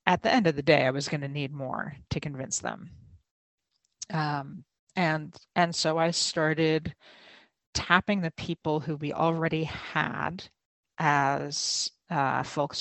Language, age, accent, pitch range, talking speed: English, 50-69, American, 140-165 Hz, 145 wpm